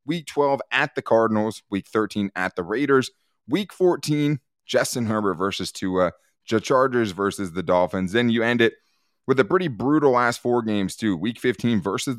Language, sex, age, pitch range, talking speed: English, male, 20-39, 100-125 Hz, 175 wpm